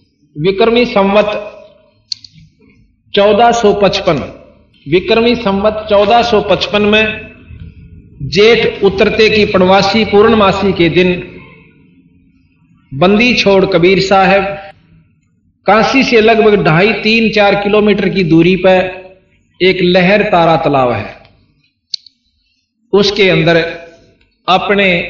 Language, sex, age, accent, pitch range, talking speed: Hindi, male, 50-69, native, 155-215 Hz, 85 wpm